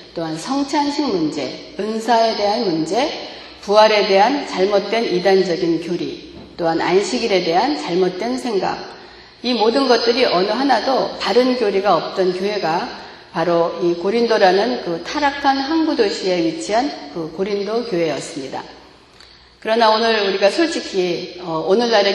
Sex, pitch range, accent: female, 175-240 Hz, native